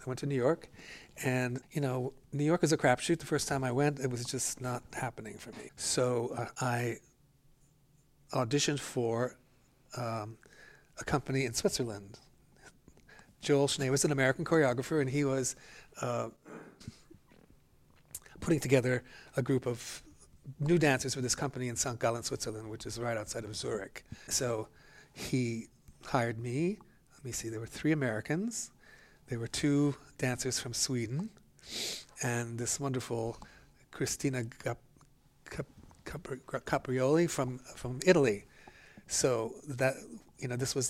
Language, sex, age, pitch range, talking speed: English, male, 40-59, 120-145 Hz, 145 wpm